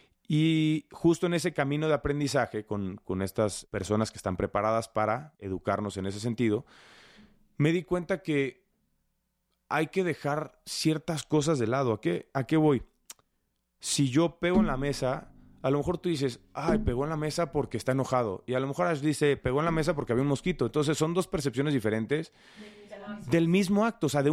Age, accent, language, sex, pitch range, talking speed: 30-49, Mexican, Spanish, male, 125-175 Hz, 195 wpm